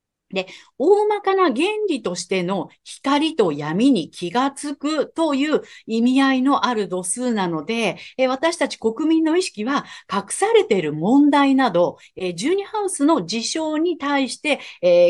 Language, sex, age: Japanese, female, 50-69